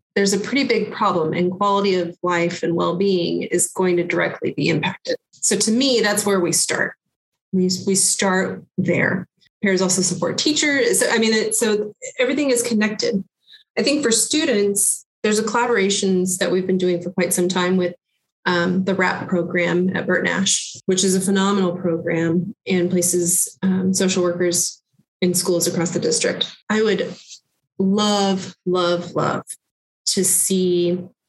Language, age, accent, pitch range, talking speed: English, 30-49, American, 180-215 Hz, 160 wpm